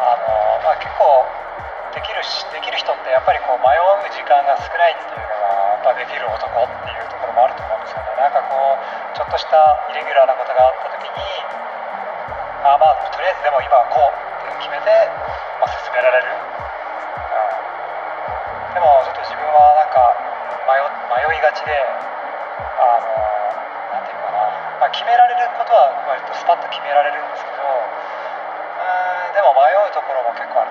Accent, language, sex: native, Japanese, male